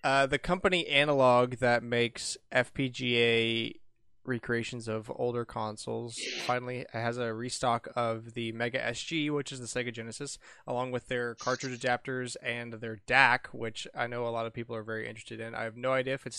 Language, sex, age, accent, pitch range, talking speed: English, male, 20-39, American, 110-125 Hz, 180 wpm